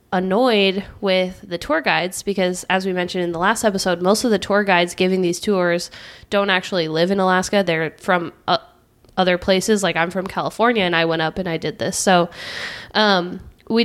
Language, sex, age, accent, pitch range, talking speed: English, female, 20-39, American, 175-210 Hz, 200 wpm